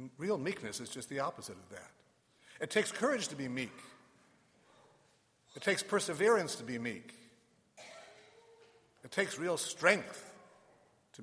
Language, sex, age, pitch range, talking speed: English, male, 60-79, 120-170 Hz, 135 wpm